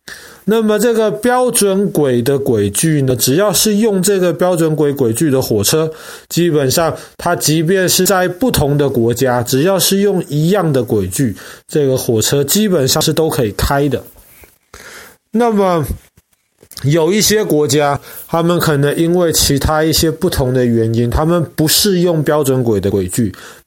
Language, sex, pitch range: Chinese, male, 130-180 Hz